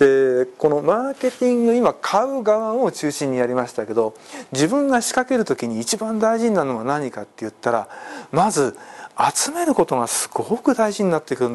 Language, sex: Japanese, male